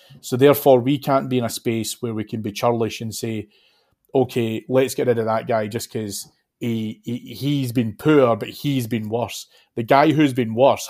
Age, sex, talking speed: 30-49, male, 210 wpm